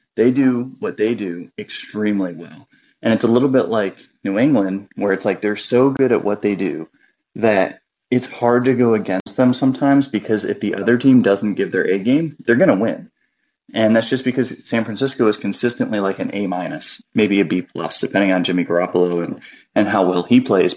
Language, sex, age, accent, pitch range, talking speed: English, male, 30-49, American, 100-130 Hz, 210 wpm